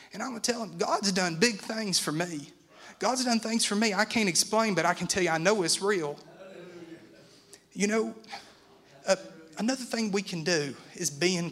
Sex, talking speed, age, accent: male, 205 wpm, 30-49, American